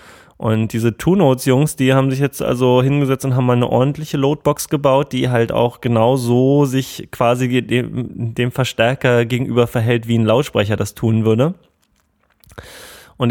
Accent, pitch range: German, 115-130 Hz